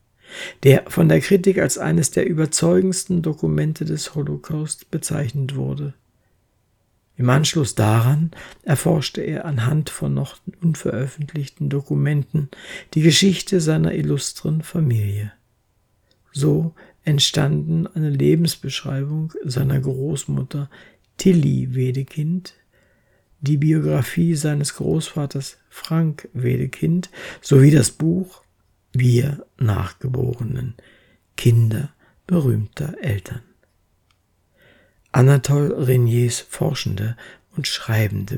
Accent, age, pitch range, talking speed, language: German, 60-79, 125-160 Hz, 85 wpm, German